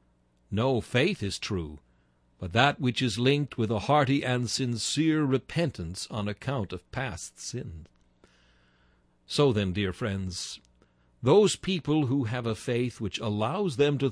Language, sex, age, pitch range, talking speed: English, male, 60-79, 100-150 Hz, 145 wpm